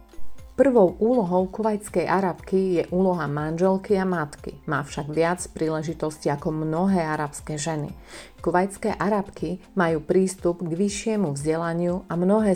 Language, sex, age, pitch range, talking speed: Slovak, female, 30-49, 155-185 Hz, 125 wpm